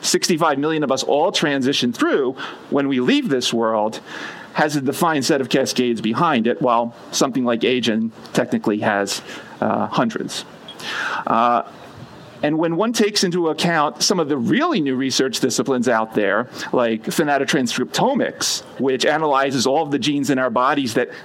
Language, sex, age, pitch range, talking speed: German, male, 40-59, 125-155 Hz, 160 wpm